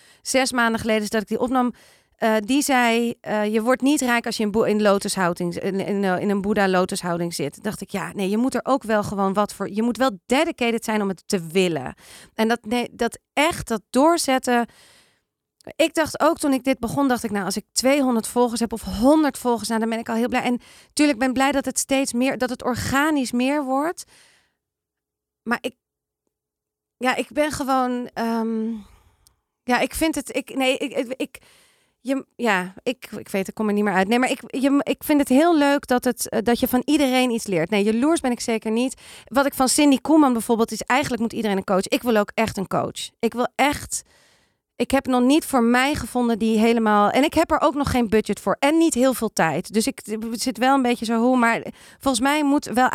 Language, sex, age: Dutch, female, 40-59